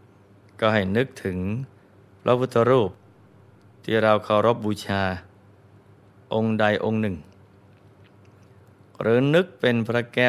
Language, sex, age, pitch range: Thai, male, 20-39, 100-110 Hz